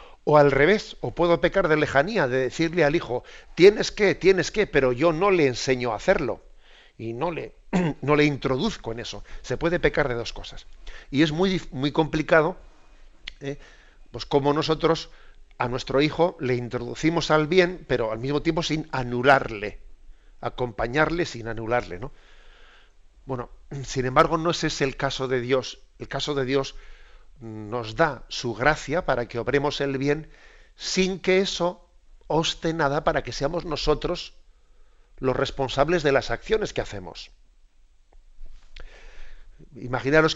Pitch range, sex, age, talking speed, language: 125-160 Hz, male, 50-69, 155 wpm, Spanish